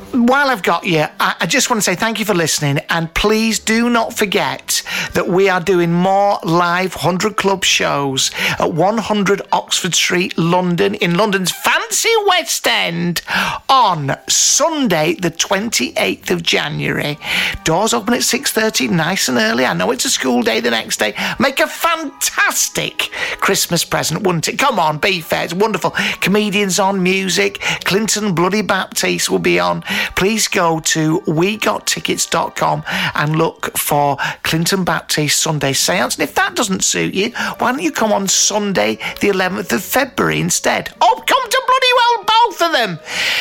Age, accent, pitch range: 50-69, British, 170-225 Hz